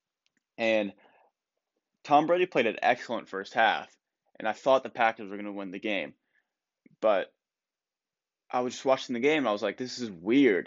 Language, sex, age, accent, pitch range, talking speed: English, male, 20-39, American, 105-125 Hz, 180 wpm